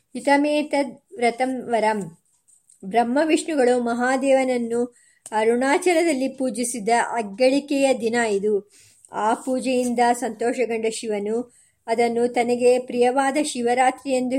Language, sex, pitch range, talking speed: Kannada, male, 230-265 Hz, 75 wpm